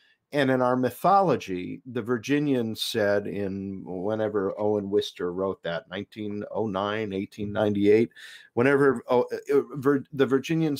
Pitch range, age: 110-135 Hz, 50-69